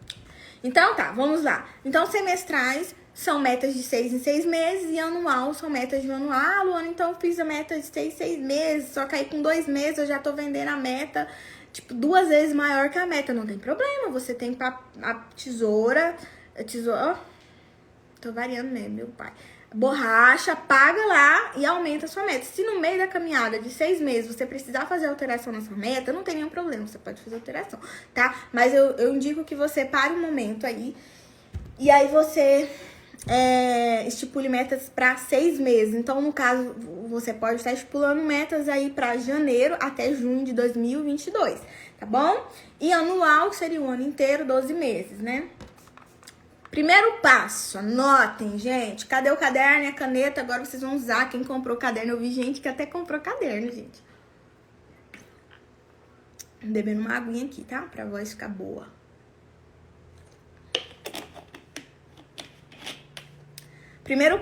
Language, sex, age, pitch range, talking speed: Portuguese, female, 10-29, 235-300 Hz, 170 wpm